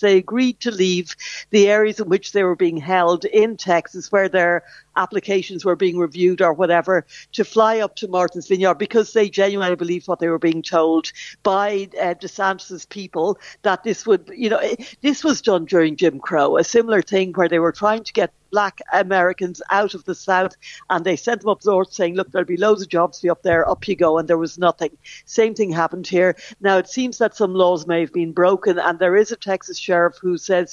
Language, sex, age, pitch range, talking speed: English, female, 60-79, 175-205 Hz, 225 wpm